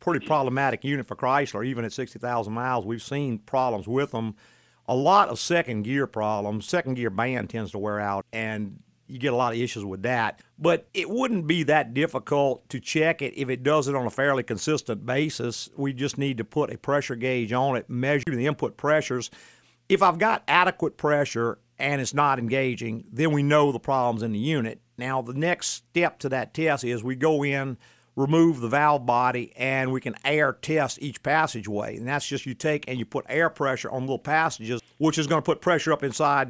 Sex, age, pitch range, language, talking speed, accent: male, 50-69, 120-150 Hz, English, 210 wpm, American